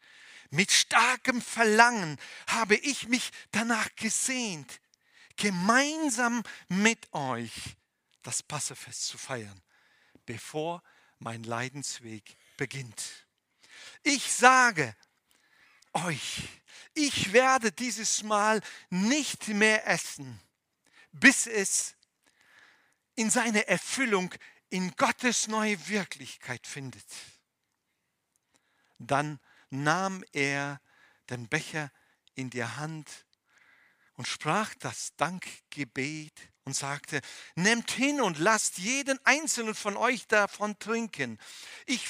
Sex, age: male, 50-69